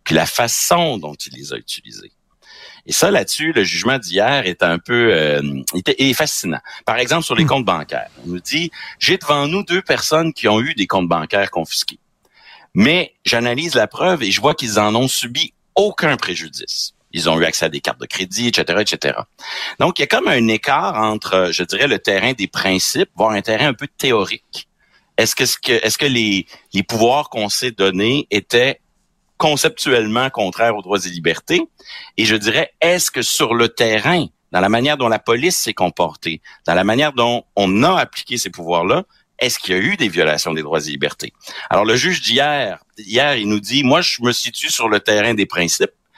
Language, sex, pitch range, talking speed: French, male, 95-130 Hz, 200 wpm